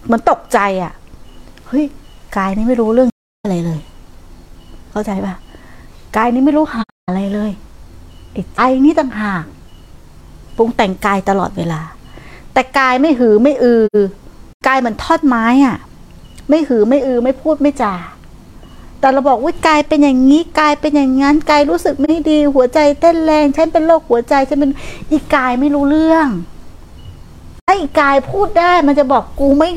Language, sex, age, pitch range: Thai, female, 60-79, 200-300 Hz